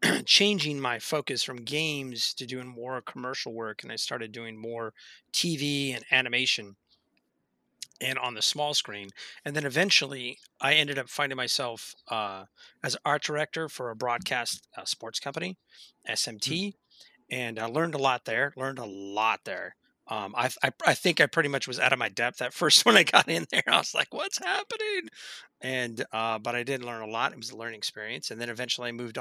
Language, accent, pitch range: English, American, 115-145 Hz